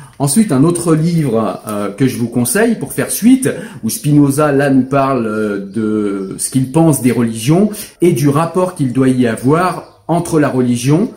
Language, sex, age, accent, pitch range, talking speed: French, male, 40-59, French, 120-155 Hz, 170 wpm